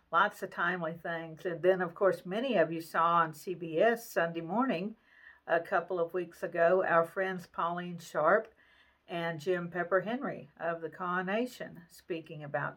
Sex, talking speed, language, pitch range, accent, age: female, 165 wpm, English, 165-185 Hz, American, 50-69